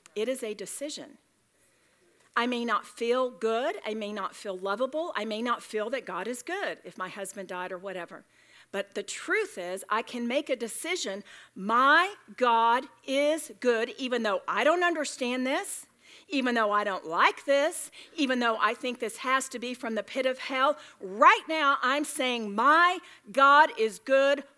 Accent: American